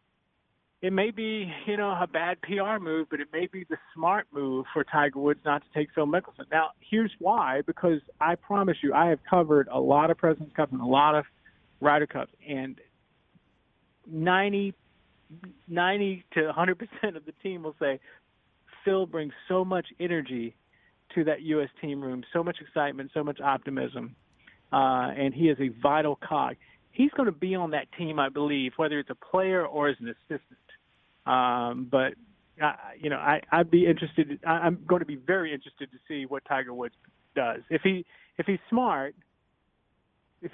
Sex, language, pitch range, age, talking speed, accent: male, English, 145-180 Hz, 40-59, 180 wpm, American